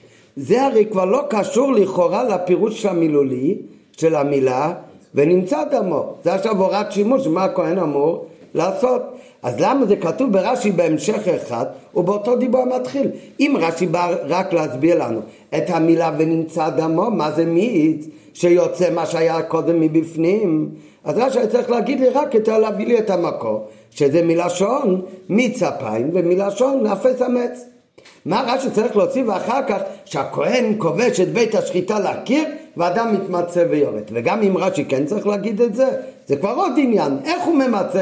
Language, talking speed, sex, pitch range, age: Hebrew, 160 wpm, male, 165-230 Hz, 50-69